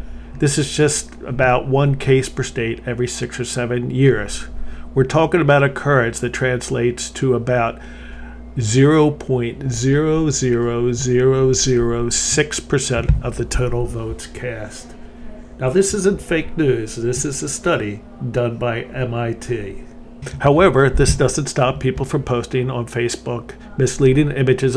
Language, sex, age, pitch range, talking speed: English, male, 50-69, 120-140 Hz, 125 wpm